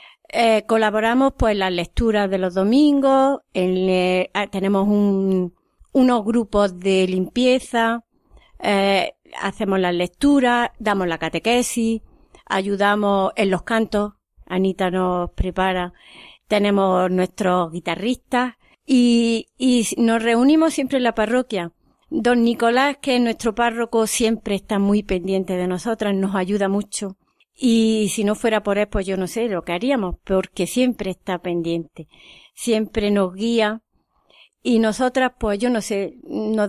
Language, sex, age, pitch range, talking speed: Spanish, female, 30-49, 195-235 Hz, 135 wpm